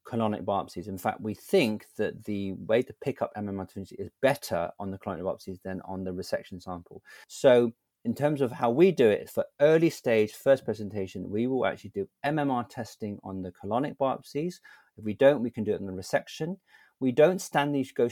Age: 40-59